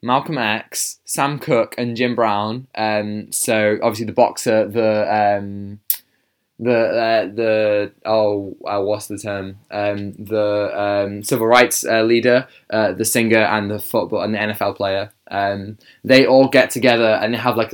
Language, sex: English, male